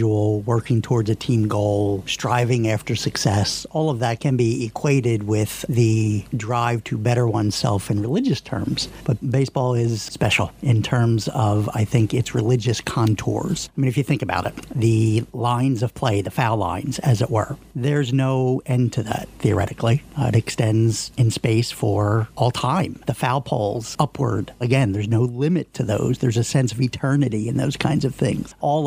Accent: American